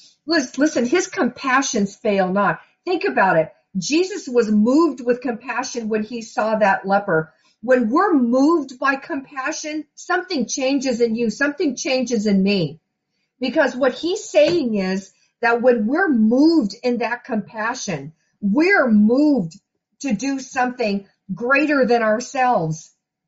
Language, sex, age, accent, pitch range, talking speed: English, female, 50-69, American, 210-275 Hz, 130 wpm